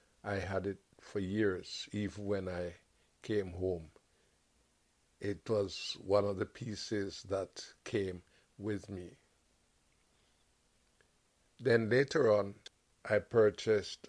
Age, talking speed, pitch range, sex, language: 60-79, 105 wpm, 90-105 Hz, male, English